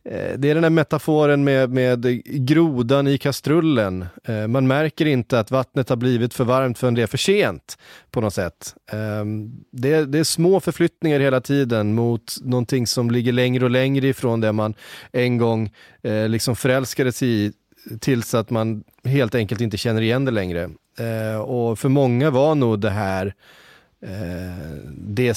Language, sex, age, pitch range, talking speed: Swedish, male, 30-49, 105-135 Hz, 160 wpm